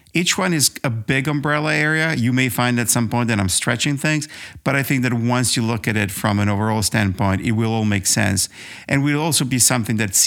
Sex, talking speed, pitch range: male, 240 wpm, 105-140 Hz